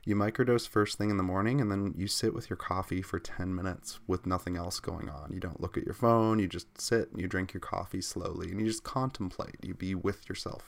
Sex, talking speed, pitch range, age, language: male, 255 wpm, 90-110 Hz, 20-39, English